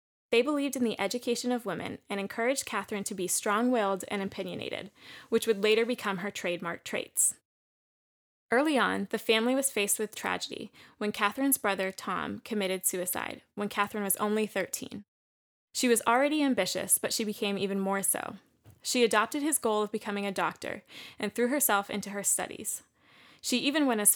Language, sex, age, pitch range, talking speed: English, female, 20-39, 195-235 Hz, 170 wpm